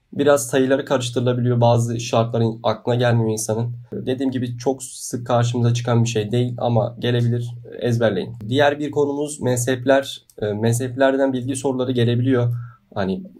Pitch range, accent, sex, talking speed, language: 120-135 Hz, native, male, 130 wpm, Turkish